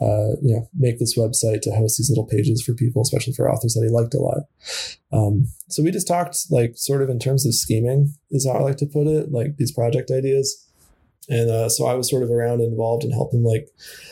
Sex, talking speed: male, 240 wpm